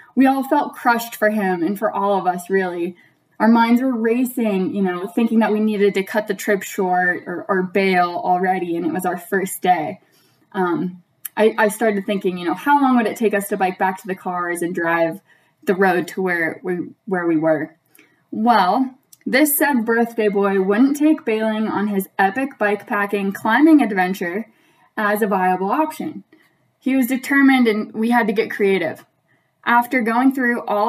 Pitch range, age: 190-240 Hz, 10-29